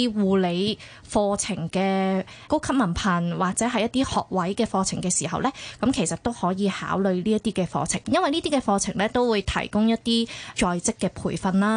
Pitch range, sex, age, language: 185-225 Hz, female, 20-39, Chinese